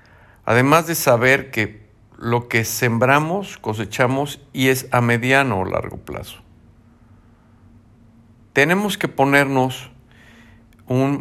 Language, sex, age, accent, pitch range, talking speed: Spanish, male, 50-69, Mexican, 105-130 Hz, 100 wpm